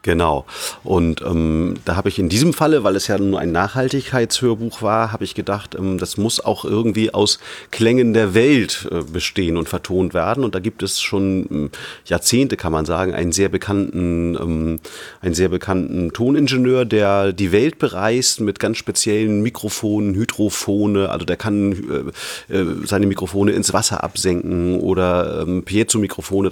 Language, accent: German, German